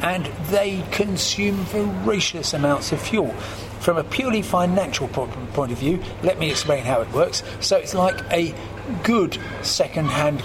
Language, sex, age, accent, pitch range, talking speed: English, male, 40-59, British, 130-170 Hz, 150 wpm